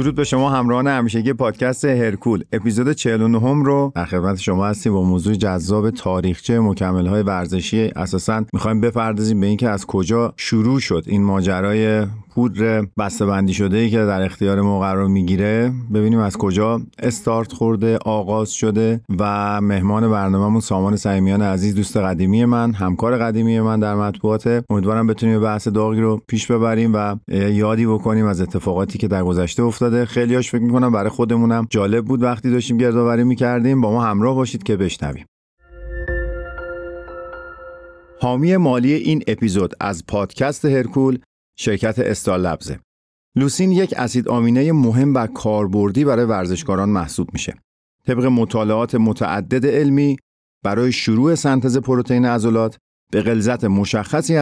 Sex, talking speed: male, 140 wpm